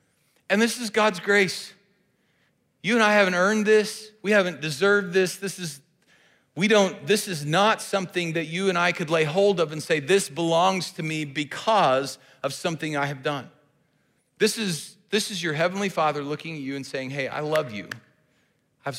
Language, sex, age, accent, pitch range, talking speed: English, male, 40-59, American, 135-170 Hz, 195 wpm